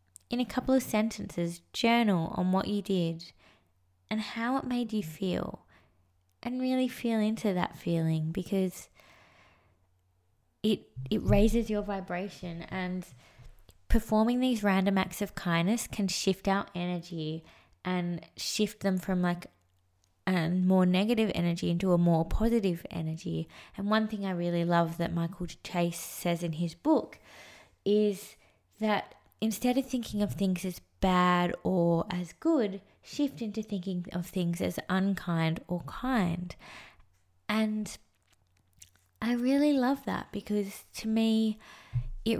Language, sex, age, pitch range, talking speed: English, female, 20-39, 160-210 Hz, 135 wpm